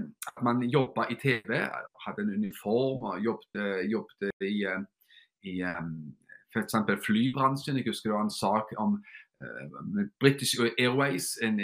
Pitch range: 110-150 Hz